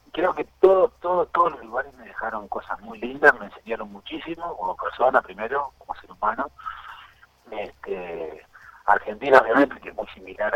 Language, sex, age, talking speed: Spanish, male, 50-69, 160 wpm